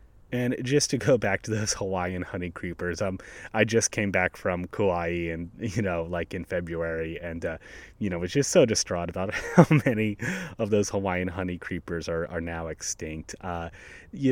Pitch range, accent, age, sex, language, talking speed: 85-110 Hz, American, 30-49, male, English, 180 wpm